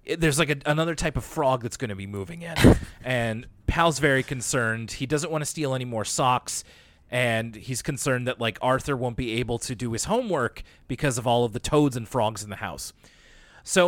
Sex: male